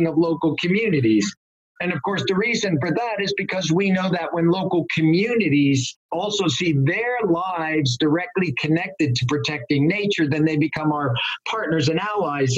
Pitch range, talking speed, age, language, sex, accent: 145-195 Hz, 160 wpm, 50-69, English, male, American